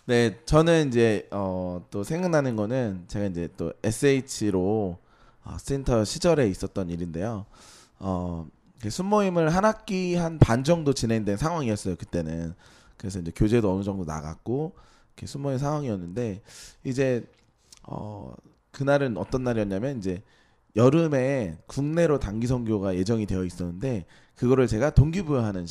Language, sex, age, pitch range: Korean, male, 20-39, 95-140 Hz